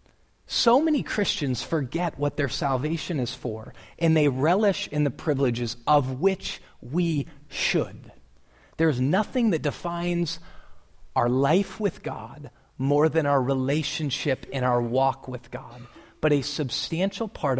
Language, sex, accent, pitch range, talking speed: English, male, American, 125-175 Hz, 135 wpm